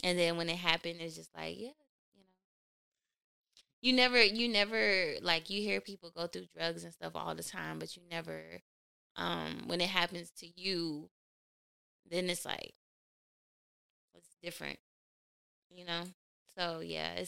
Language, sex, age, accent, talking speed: English, female, 10-29, American, 155 wpm